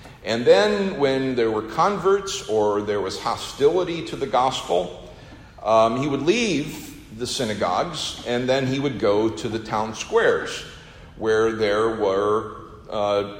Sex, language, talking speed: male, English, 145 wpm